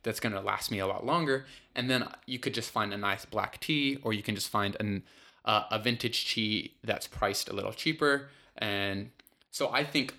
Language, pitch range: English, 105-125 Hz